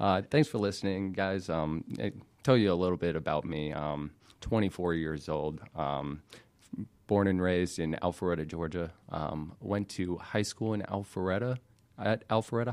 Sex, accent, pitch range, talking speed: male, American, 85-105 Hz, 160 wpm